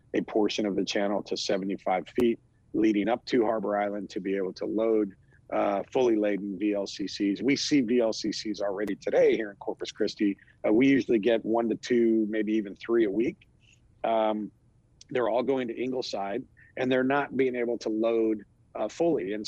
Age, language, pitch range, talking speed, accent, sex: 40-59, English, 105-125 Hz, 180 wpm, American, male